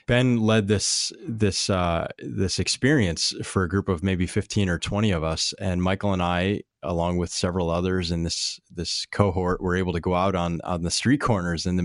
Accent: American